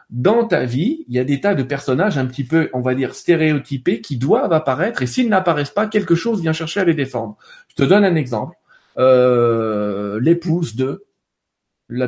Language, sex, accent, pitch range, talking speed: French, male, French, 130-205 Hz, 200 wpm